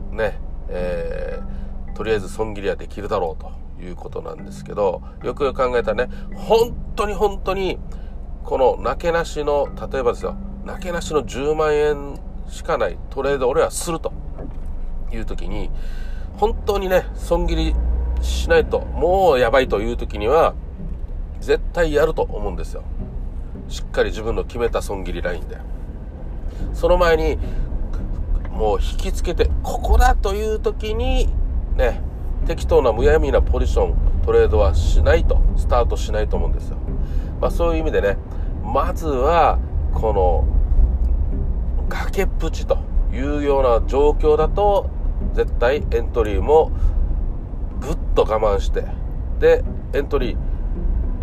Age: 40-59